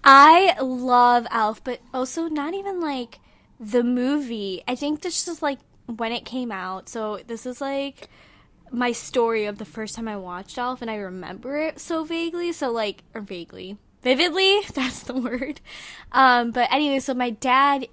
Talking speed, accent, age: 175 wpm, American, 10-29